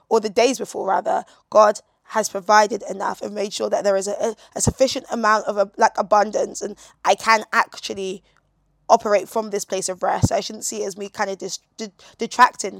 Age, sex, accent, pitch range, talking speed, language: 20-39, female, British, 205-240 Hz, 200 wpm, English